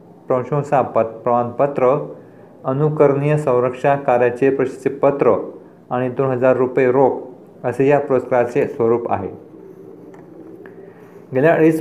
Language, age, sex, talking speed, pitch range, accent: Marathi, 50-69, male, 90 wpm, 125-150 Hz, native